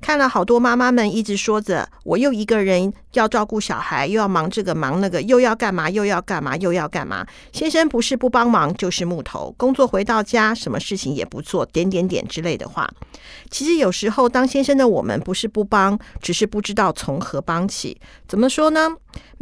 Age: 50-69